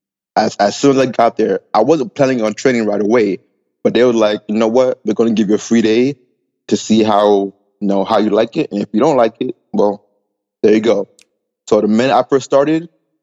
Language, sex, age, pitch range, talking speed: English, male, 20-39, 105-125 Hz, 245 wpm